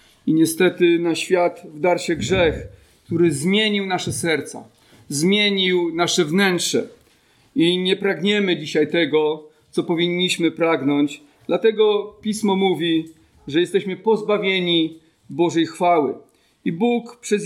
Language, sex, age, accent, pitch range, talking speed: Polish, male, 40-59, native, 175-225 Hz, 115 wpm